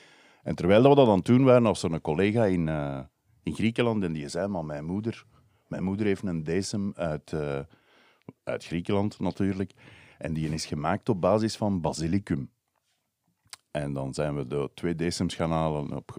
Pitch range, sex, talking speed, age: 75-100 Hz, male, 180 wpm, 50-69